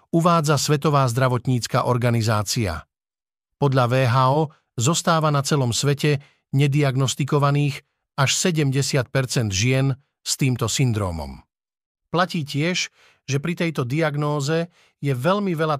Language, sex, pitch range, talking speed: Slovak, male, 130-160 Hz, 100 wpm